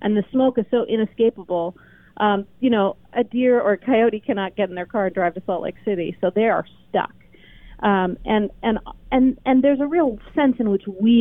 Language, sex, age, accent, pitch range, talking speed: English, female, 40-59, American, 185-240 Hz, 220 wpm